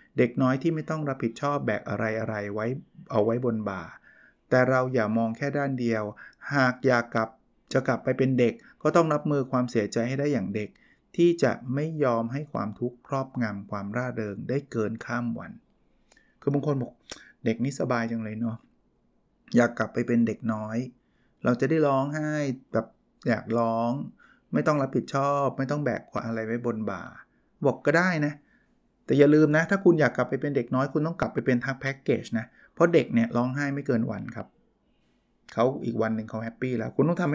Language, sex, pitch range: Thai, male, 115-145 Hz